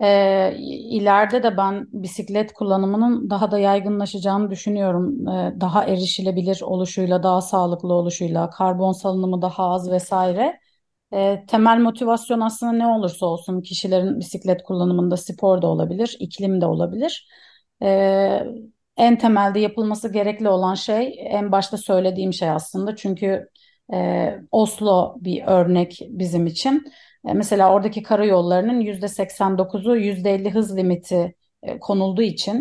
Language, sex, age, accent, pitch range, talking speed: Turkish, female, 30-49, native, 185-220 Hz, 120 wpm